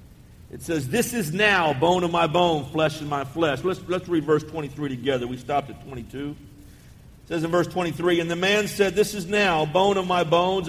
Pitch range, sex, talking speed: 160-215 Hz, male, 220 wpm